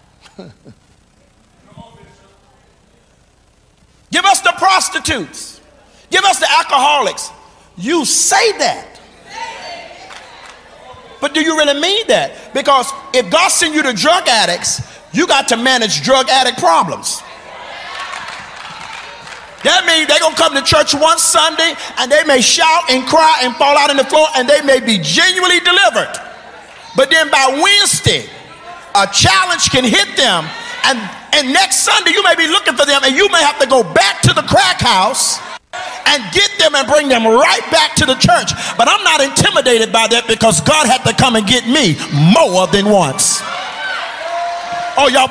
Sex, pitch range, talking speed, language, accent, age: male, 250-340 Hz, 160 wpm, English, American, 50-69